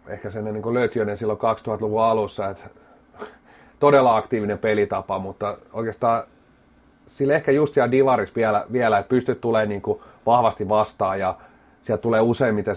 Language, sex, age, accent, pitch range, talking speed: Finnish, male, 30-49, native, 105-120 Hz, 135 wpm